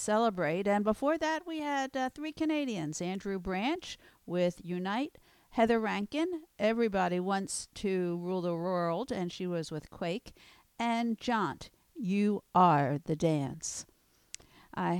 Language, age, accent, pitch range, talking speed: English, 50-69, American, 185-255 Hz, 130 wpm